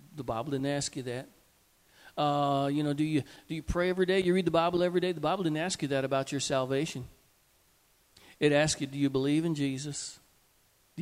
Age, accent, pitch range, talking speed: 50-69, American, 155-220 Hz, 220 wpm